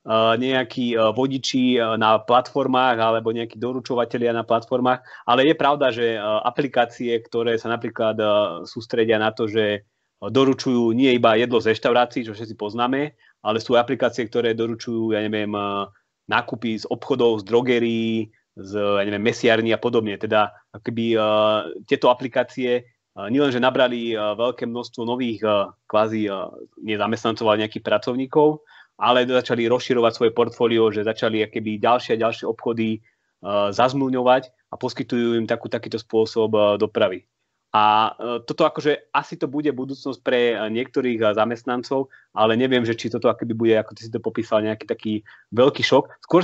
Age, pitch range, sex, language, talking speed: 30-49, 110-130 Hz, male, Slovak, 140 wpm